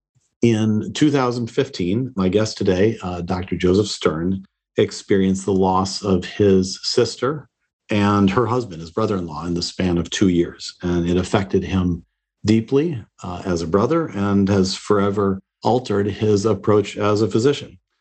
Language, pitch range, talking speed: English, 90-105 Hz, 150 wpm